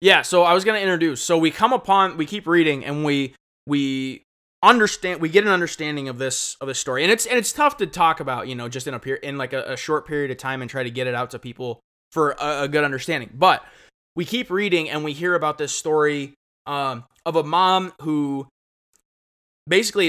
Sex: male